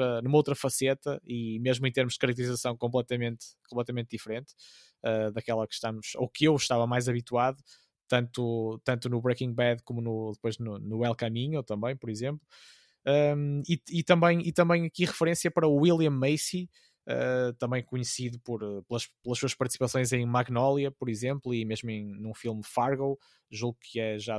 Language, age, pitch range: Portuguese, 20-39, 120-150 Hz